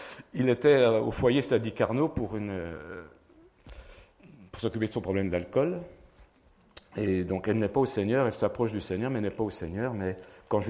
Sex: male